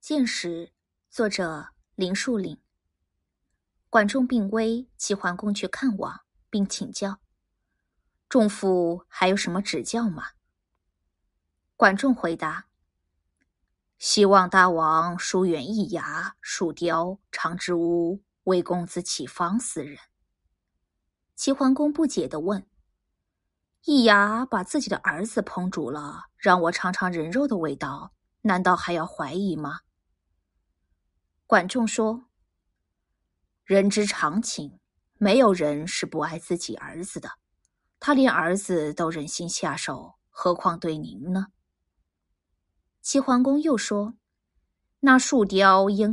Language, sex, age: Chinese, female, 20-39